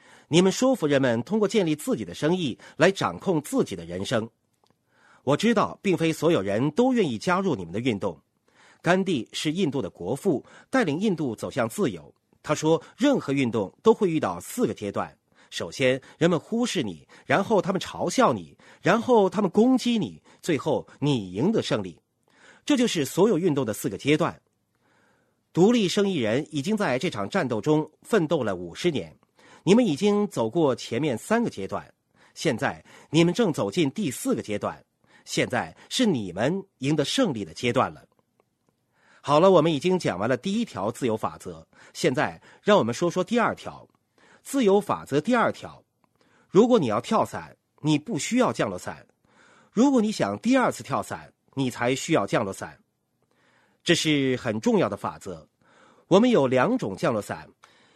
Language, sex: Chinese, male